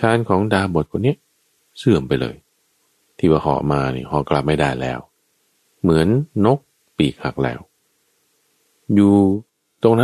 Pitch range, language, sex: 70-115 Hz, Thai, male